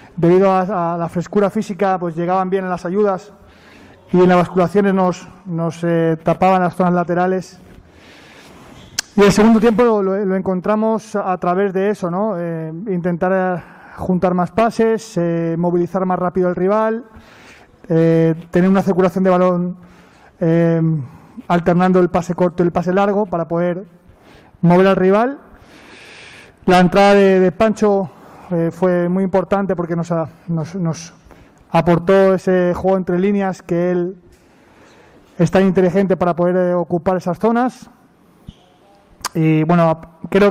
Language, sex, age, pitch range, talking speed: Spanish, male, 20-39, 175-200 Hz, 145 wpm